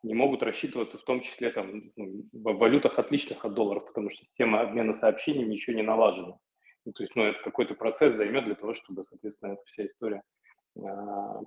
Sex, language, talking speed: male, Russian, 195 wpm